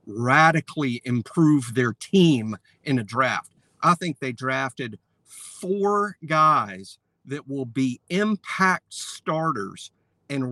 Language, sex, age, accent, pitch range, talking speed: English, male, 50-69, American, 115-145 Hz, 110 wpm